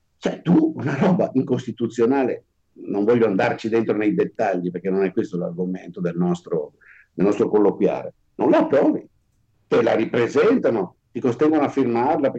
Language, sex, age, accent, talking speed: Italian, male, 50-69, native, 145 wpm